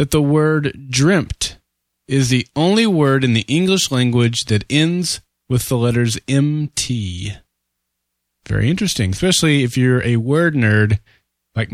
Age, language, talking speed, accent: 30-49, English, 140 wpm, American